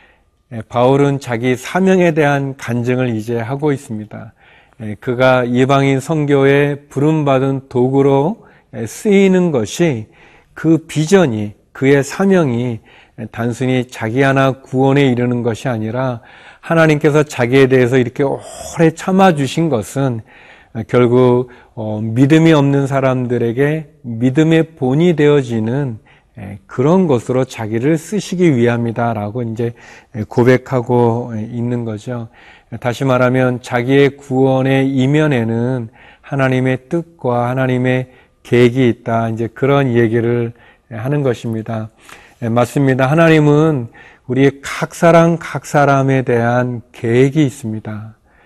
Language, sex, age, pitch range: Korean, male, 40-59, 120-140 Hz